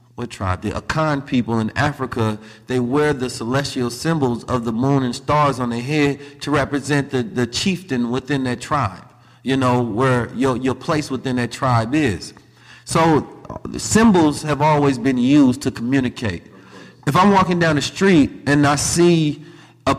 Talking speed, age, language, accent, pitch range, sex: 170 wpm, 30-49, English, American, 120-150 Hz, male